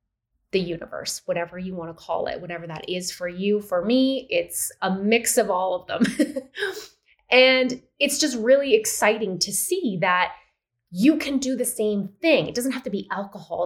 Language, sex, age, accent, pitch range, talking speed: English, female, 20-39, American, 195-270 Hz, 185 wpm